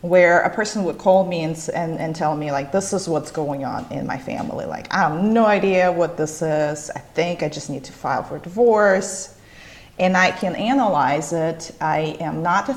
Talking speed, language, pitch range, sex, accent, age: 215 wpm, English, 150-185 Hz, female, American, 30-49